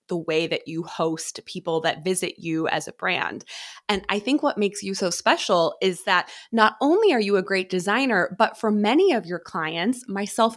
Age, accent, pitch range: 20-39, American, 170-215 Hz